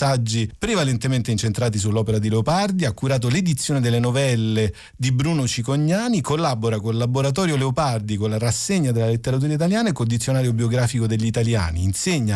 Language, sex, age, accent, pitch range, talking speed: Italian, male, 40-59, native, 115-155 Hz, 150 wpm